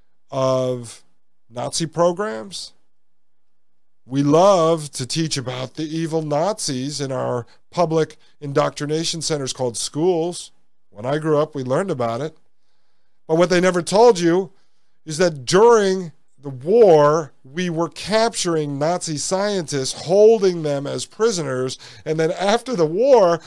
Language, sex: English, male